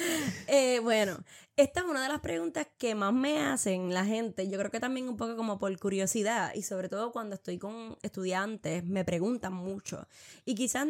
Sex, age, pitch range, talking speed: female, 10-29, 195-255 Hz, 195 wpm